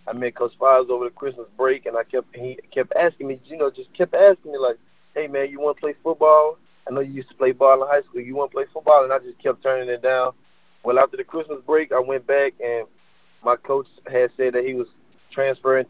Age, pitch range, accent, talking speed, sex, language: 20-39, 125-140 Hz, American, 250 wpm, male, English